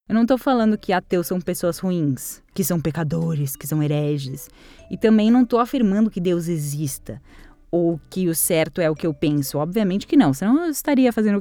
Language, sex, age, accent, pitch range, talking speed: Portuguese, female, 10-29, Brazilian, 165-220 Hz, 205 wpm